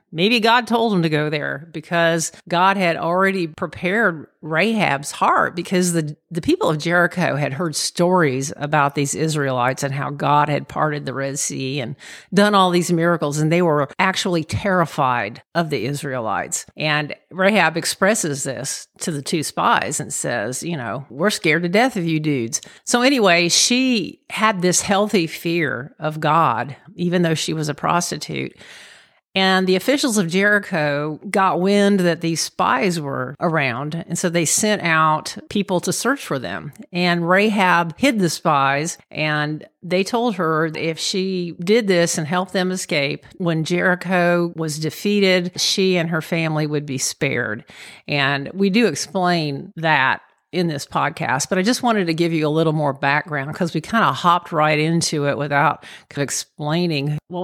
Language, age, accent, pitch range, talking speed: English, 50-69, American, 150-185 Hz, 170 wpm